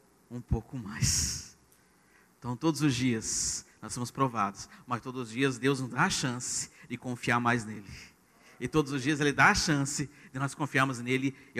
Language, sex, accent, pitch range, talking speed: Portuguese, male, Brazilian, 130-170 Hz, 185 wpm